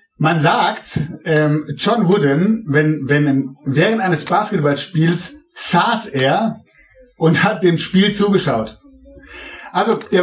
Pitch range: 145-200 Hz